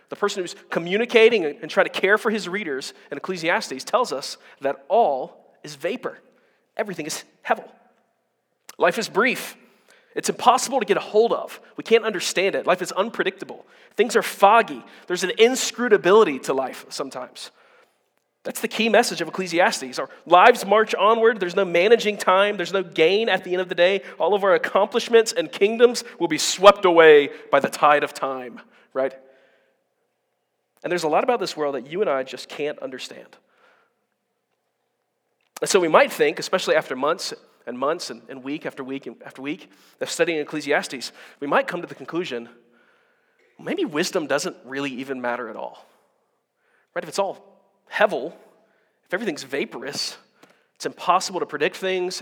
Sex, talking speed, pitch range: male, 170 wpm, 155-230 Hz